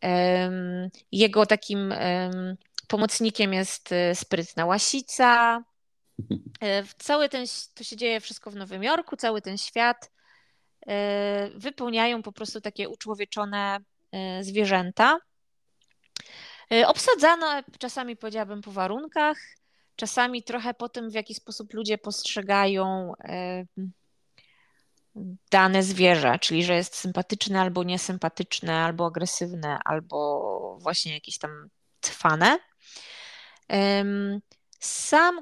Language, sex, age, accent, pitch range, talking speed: Polish, female, 20-39, native, 195-245 Hz, 90 wpm